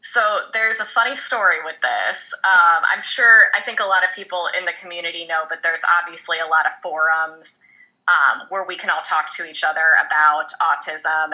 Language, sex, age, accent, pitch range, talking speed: English, female, 20-39, American, 165-200 Hz, 200 wpm